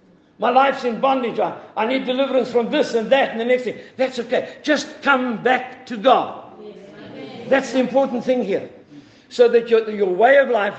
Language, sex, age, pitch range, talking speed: English, male, 60-79, 185-250 Hz, 195 wpm